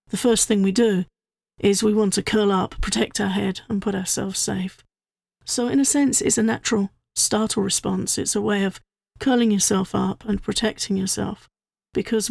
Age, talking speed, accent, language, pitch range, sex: 50-69, 185 wpm, British, English, 195-215 Hz, female